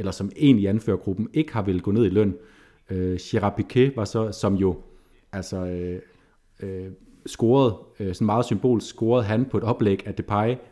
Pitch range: 95-115 Hz